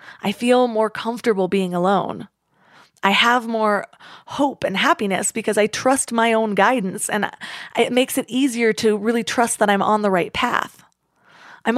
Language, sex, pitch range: English, female, 200-245 Hz